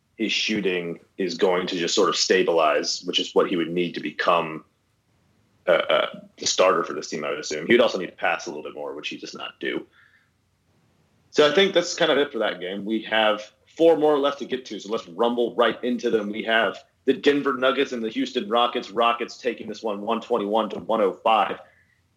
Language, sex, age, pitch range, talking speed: English, male, 30-49, 110-135 Hz, 230 wpm